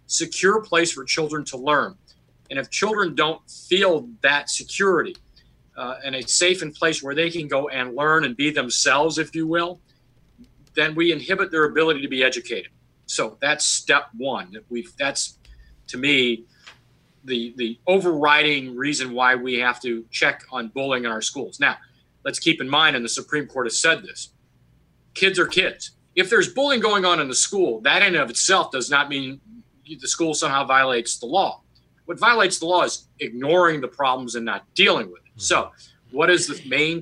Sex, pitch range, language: male, 130-165 Hz, English